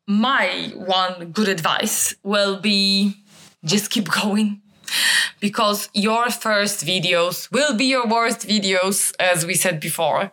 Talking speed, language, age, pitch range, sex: 130 wpm, English, 20-39, 175-230 Hz, female